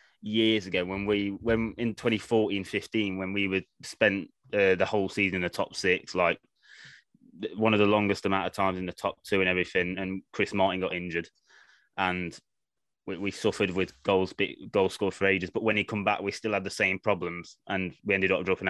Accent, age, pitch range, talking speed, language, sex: British, 20-39, 90-105 Hz, 210 wpm, English, male